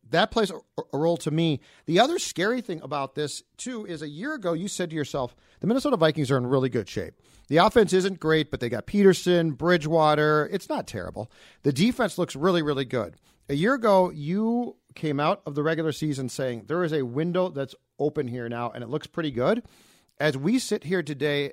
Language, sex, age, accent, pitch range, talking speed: English, male, 40-59, American, 130-175 Hz, 210 wpm